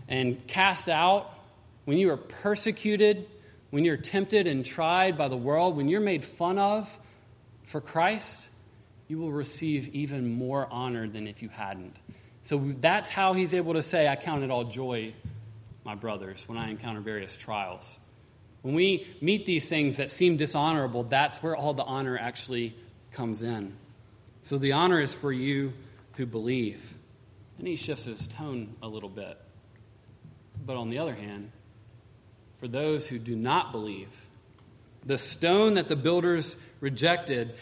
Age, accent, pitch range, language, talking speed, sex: 30-49, American, 115-165 Hz, English, 160 wpm, male